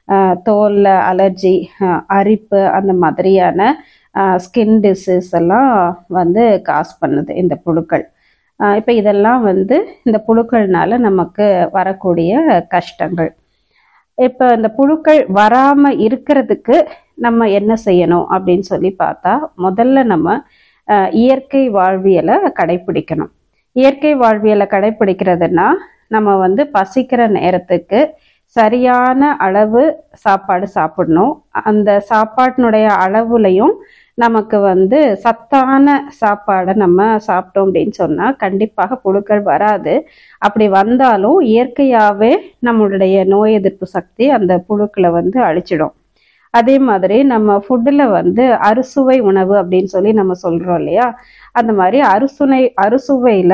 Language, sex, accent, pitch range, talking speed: Tamil, female, native, 190-250 Hz, 100 wpm